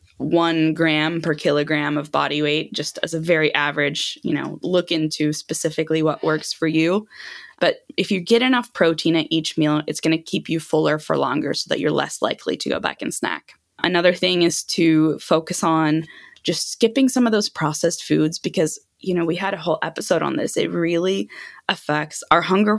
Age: 10-29